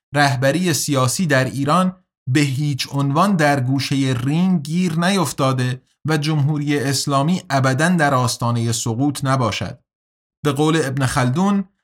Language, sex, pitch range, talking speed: Persian, male, 125-170 Hz, 115 wpm